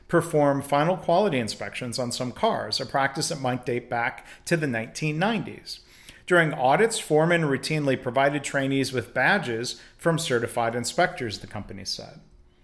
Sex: male